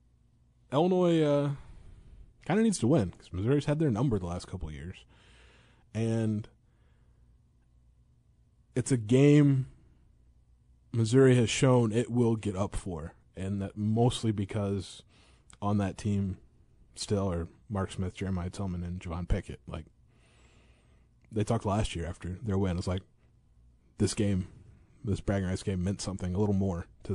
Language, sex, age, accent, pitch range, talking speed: English, male, 20-39, American, 90-120 Hz, 150 wpm